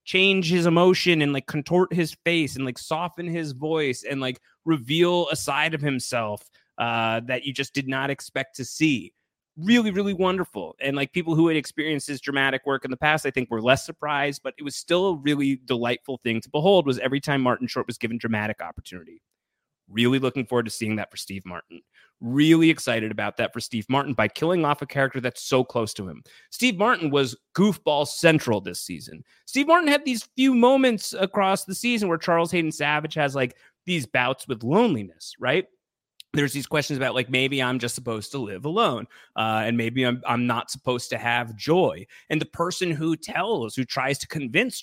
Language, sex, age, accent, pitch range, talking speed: English, male, 30-49, American, 125-165 Hz, 205 wpm